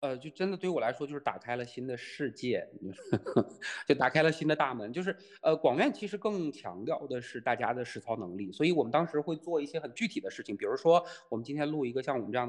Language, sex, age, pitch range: Chinese, male, 20-39, 115-150 Hz